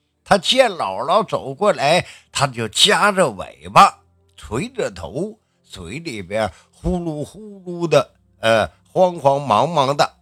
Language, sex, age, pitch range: Chinese, male, 50-69, 125-195 Hz